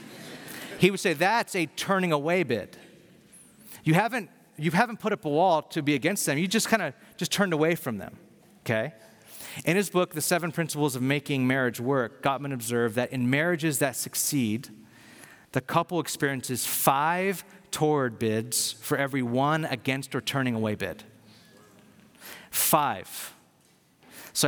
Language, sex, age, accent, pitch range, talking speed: English, male, 30-49, American, 130-175 Hz, 155 wpm